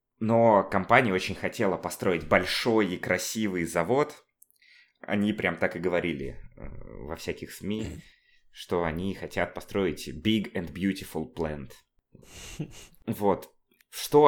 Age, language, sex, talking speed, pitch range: 20-39, Russian, male, 115 wpm, 85-110 Hz